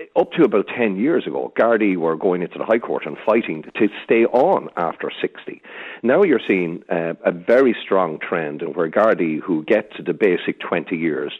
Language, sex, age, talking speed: English, male, 50-69, 195 wpm